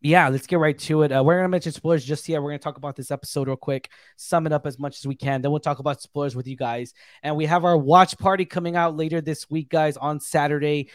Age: 20-39